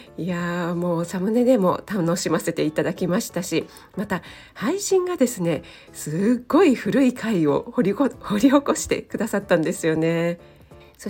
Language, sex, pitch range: Japanese, female, 170-240 Hz